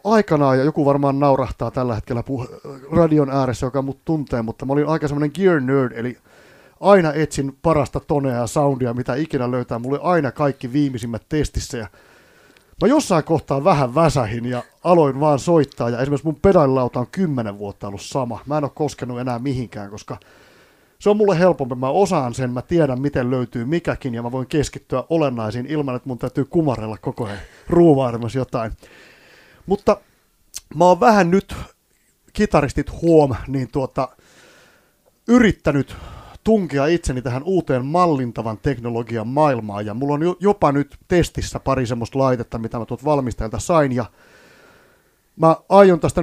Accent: native